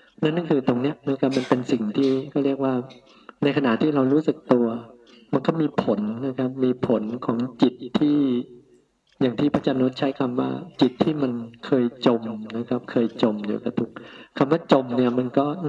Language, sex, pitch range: Thai, male, 120-140 Hz